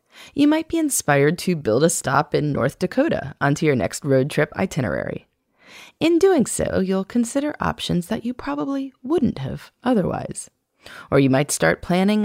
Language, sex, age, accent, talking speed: English, female, 30-49, American, 165 wpm